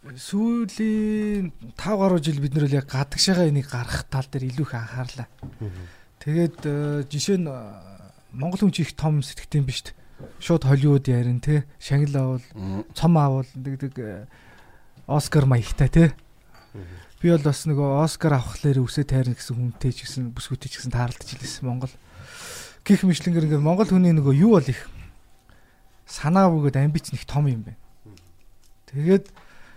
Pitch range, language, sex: 120-150 Hz, Korean, male